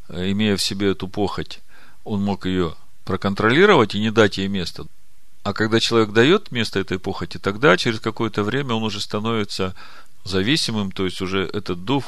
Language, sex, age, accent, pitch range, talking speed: Russian, male, 40-59, native, 95-120 Hz, 170 wpm